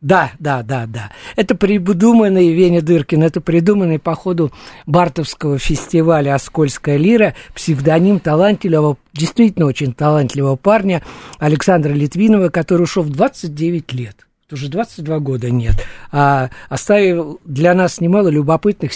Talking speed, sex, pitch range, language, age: 120 wpm, male, 140-185 Hz, Russian, 50-69